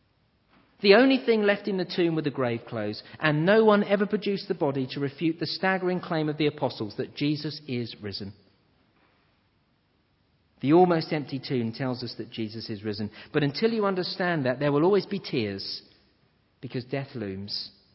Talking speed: 175 wpm